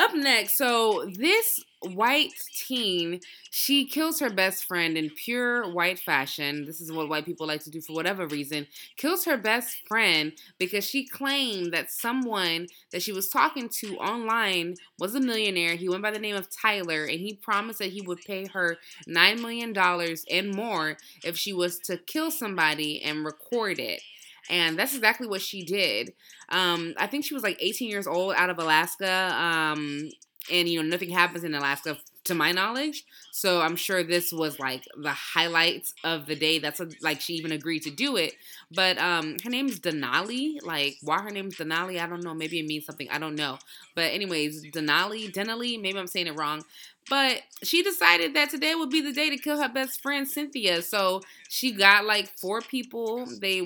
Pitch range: 165-230 Hz